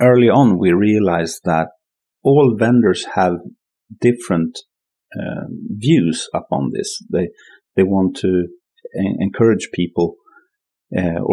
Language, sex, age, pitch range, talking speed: English, male, 40-59, 90-120 Hz, 105 wpm